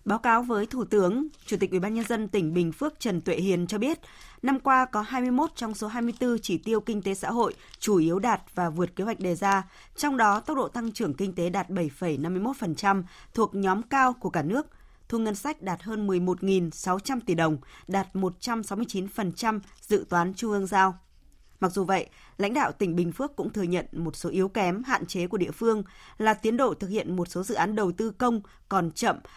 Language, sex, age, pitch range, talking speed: Vietnamese, female, 20-39, 180-230 Hz, 210 wpm